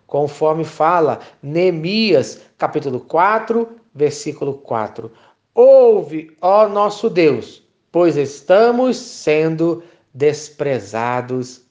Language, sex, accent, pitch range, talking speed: Portuguese, male, Brazilian, 145-220 Hz, 75 wpm